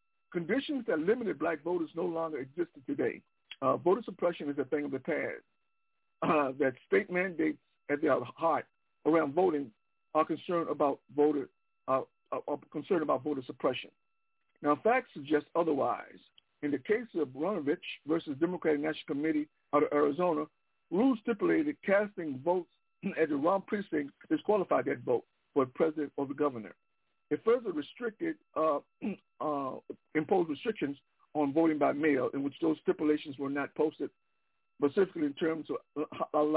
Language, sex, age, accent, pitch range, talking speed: English, male, 60-79, American, 150-220 Hz, 150 wpm